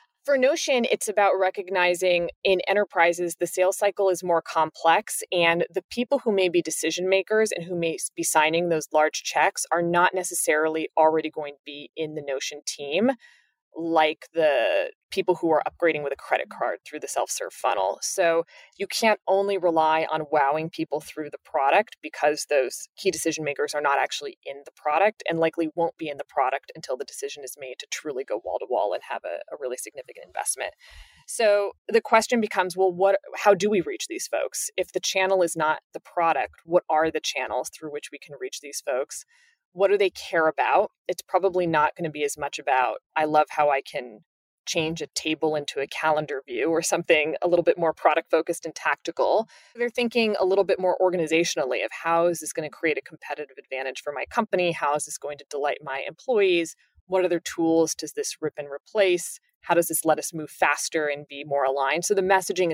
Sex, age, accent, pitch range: female, 20-39, American, 155-200 Hz